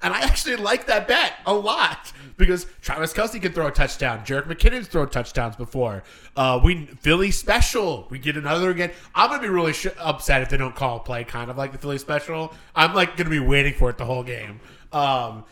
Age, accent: 20-39, American